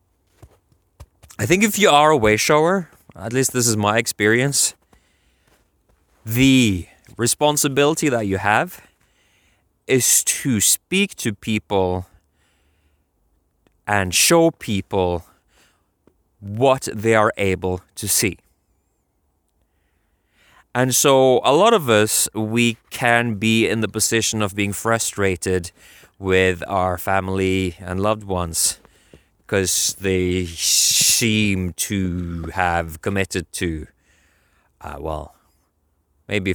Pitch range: 90-115 Hz